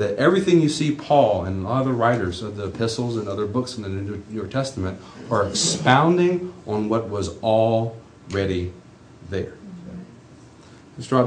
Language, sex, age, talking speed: English, male, 40-59, 165 wpm